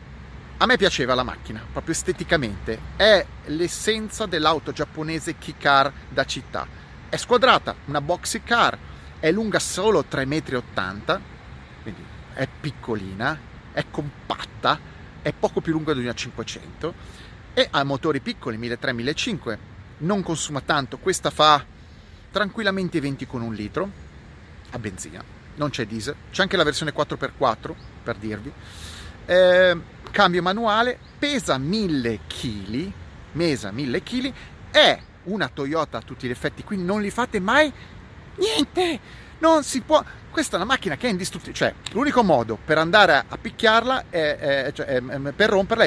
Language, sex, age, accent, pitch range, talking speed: Italian, male, 30-49, native, 125-200 Hz, 145 wpm